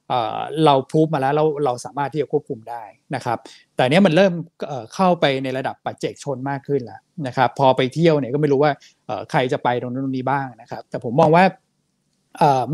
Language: Thai